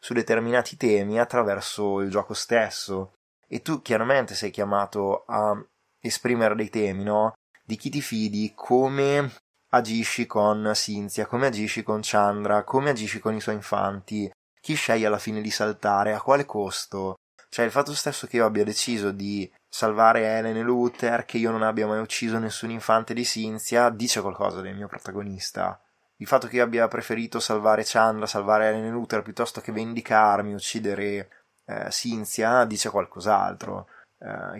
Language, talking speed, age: Italian, 160 wpm, 20-39